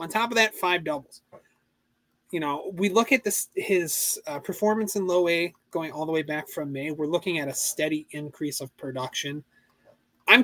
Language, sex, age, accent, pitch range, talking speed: English, male, 30-49, American, 150-200 Hz, 195 wpm